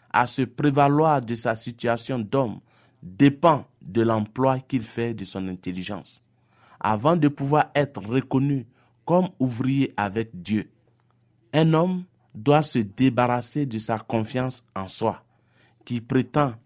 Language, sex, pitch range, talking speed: French, male, 115-140 Hz, 130 wpm